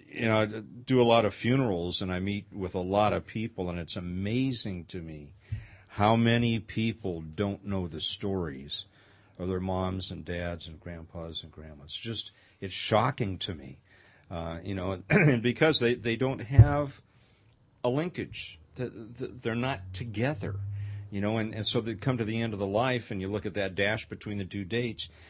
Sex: male